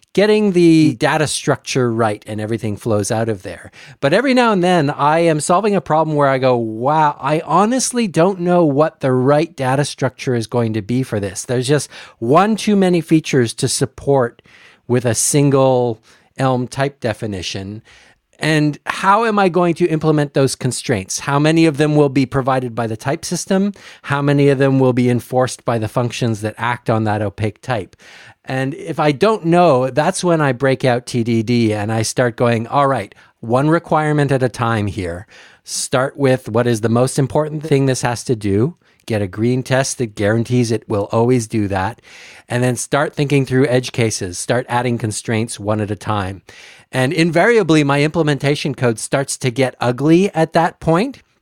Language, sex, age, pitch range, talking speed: English, male, 40-59, 115-155 Hz, 190 wpm